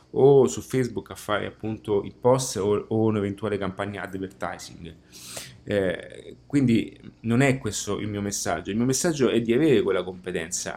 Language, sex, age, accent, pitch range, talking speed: Italian, male, 30-49, native, 100-130 Hz, 160 wpm